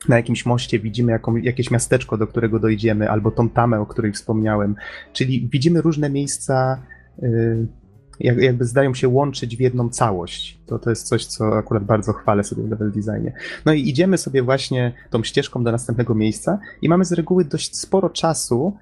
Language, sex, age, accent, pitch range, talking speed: Polish, male, 20-39, native, 115-140 Hz, 175 wpm